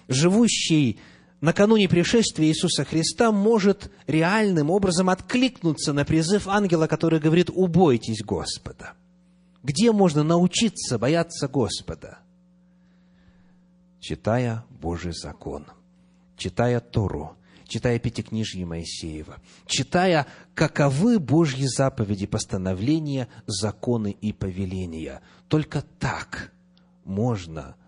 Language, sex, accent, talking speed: Russian, male, native, 85 wpm